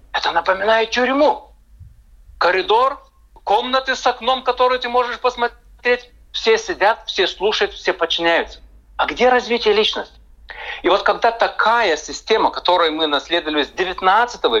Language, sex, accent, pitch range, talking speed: Russian, male, native, 195-255 Hz, 125 wpm